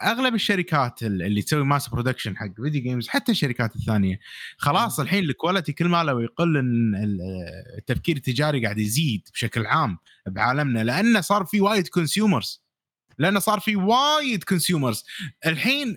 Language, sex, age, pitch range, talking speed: Arabic, male, 30-49, 135-205 Hz, 145 wpm